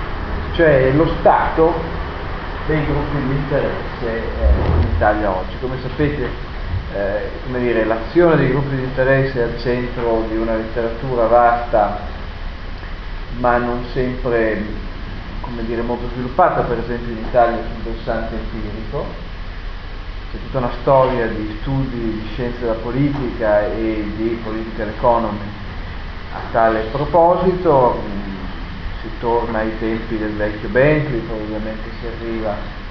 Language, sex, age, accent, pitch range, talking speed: Italian, male, 40-59, native, 105-130 Hz, 125 wpm